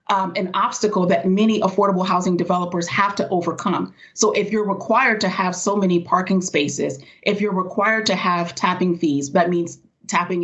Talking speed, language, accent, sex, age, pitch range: 180 wpm, English, American, female, 30-49, 175-205 Hz